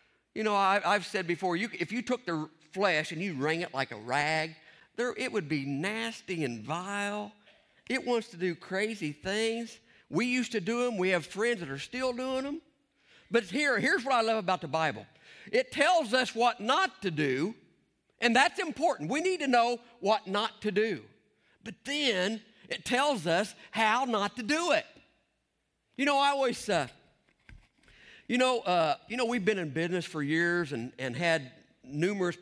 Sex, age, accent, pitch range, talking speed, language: male, 50-69, American, 180-260 Hz, 190 wpm, English